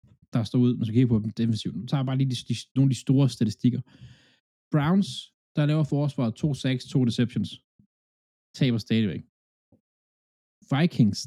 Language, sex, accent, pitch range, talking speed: Danish, male, native, 110-135 Hz, 190 wpm